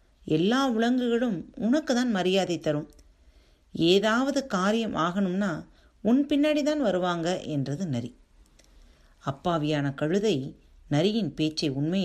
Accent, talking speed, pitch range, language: native, 100 wpm, 145-225 Hz, Tamil